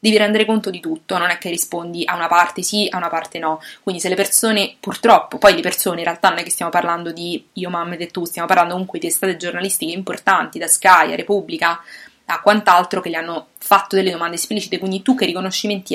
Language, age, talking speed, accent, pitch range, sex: English, 20-39, 230 wpm, Italian, 170-205 Hz, female